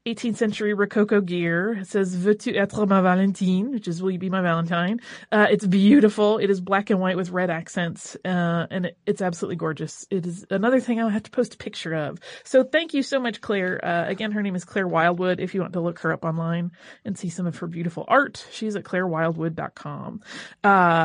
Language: English